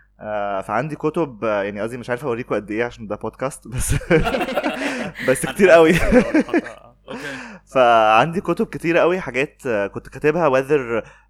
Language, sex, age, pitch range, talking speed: Arabic, male, 20-39, 110-140 Hz, 120 wpm